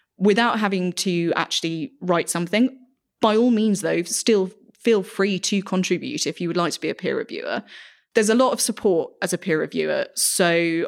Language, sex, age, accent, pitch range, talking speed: English, female, 20-39, British, 170-195 Hz, 190 wpm